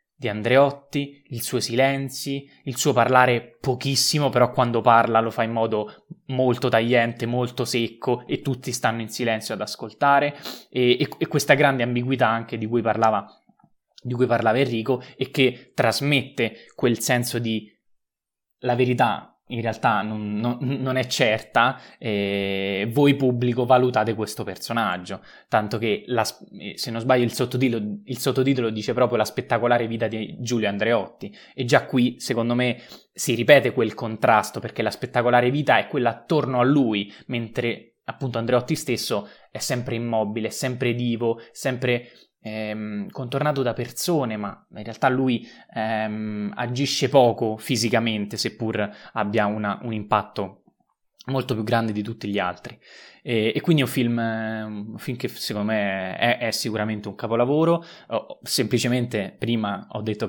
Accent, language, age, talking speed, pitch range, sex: native, Italian, 20-39, 150 wpm, 110-130 Hz, male